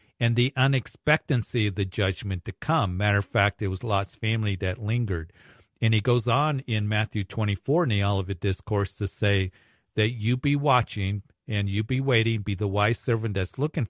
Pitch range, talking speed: 100-120 Hz, 190 wpm